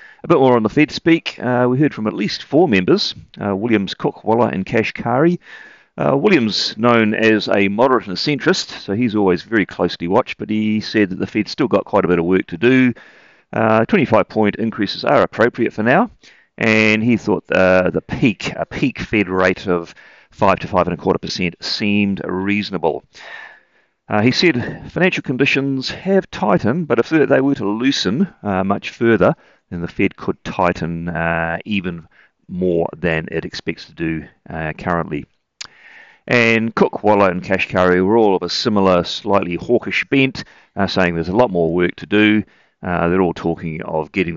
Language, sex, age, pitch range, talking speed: English, male, 40-59, 85-115 Hz, 185 wpm